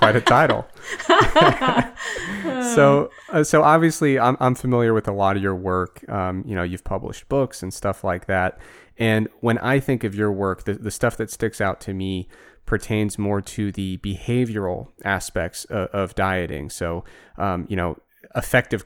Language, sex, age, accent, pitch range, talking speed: English, male, 30-49, American, 95-120 Hz, 175 wpm